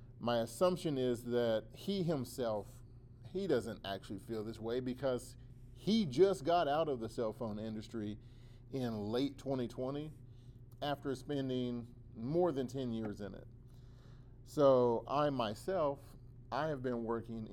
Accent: American